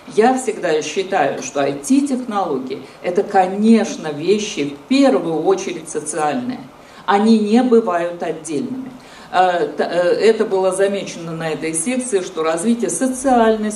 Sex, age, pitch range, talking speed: female, 50-69, 170-225 Hz, 115 wpm